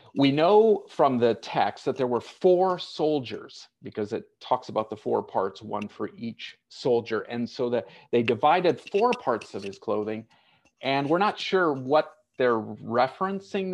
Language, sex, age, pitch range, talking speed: English, male, 40-59, 110-140 Hz, 165 wpm